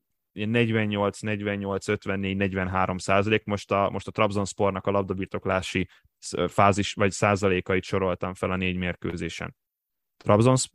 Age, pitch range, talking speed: 10-29, 95-115 Hz, 115 wpm